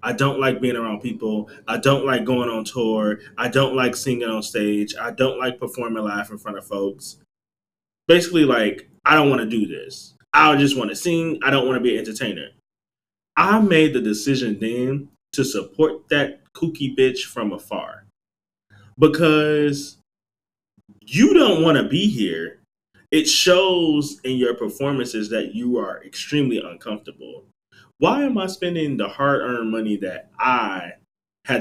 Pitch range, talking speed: 110-155 Hz, 155 wpm